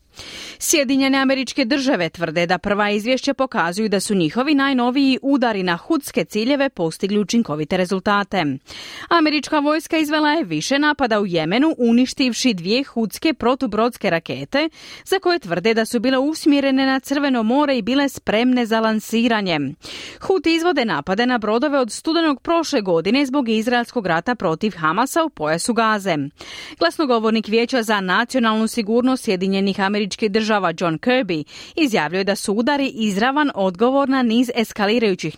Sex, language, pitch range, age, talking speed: female, Croatian, 165-265 Hz, 30-49, 140 wpm